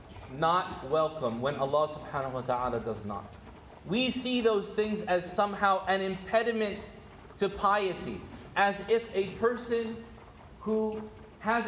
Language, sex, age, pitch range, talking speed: English, male, 30-49, 150-210 Hz, 130 wpm